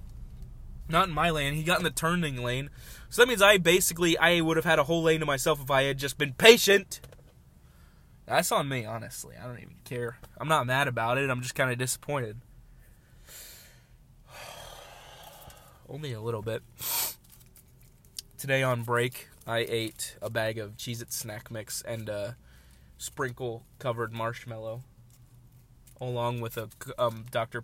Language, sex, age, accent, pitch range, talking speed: English, male, 20-39, American, 110-135 Hz, 155 wpm